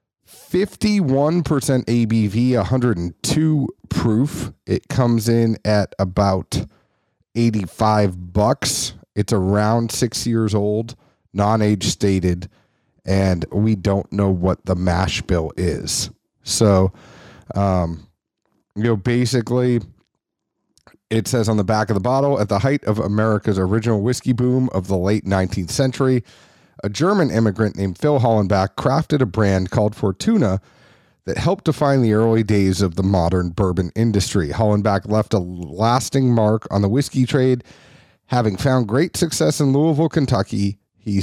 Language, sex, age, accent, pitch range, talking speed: English, male, 40-59, American, 100-130 Hz, 135 wpm